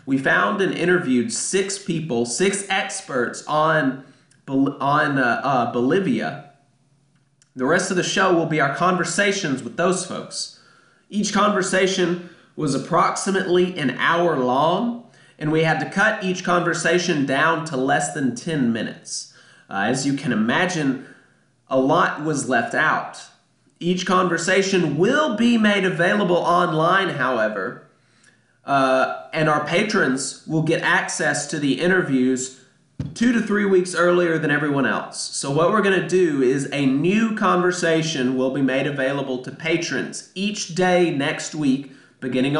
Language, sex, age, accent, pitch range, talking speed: English, male, 30-49, American, 140-185 Hz, 145 wpm